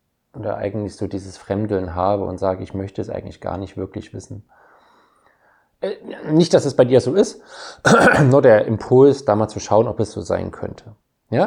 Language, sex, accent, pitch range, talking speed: German, male, German, 95-110 Hz, 190 wpm